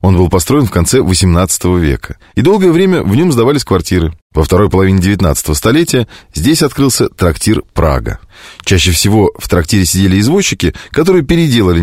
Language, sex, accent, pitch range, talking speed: Russian, male, native, 90-130 Hz, 155 wpm